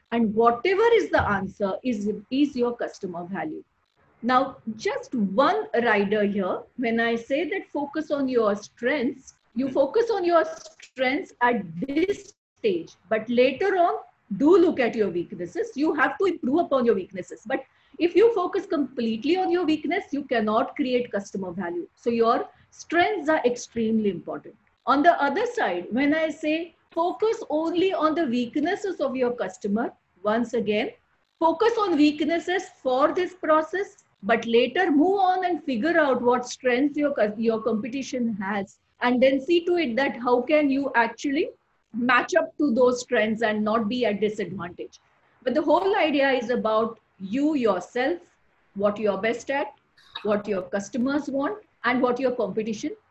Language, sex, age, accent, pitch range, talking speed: English, female, 50-69, Indian, 230-325 Hz, 160 wpm